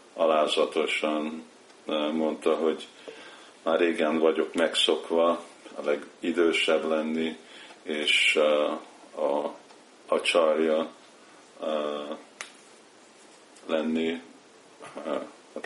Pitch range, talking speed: 75-90 Hz, 70 wpm